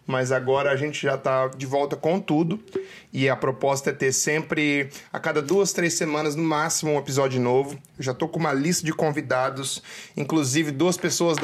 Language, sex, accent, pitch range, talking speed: Portuguese, male, Brazilian, 135-160 Hz, 180 wpm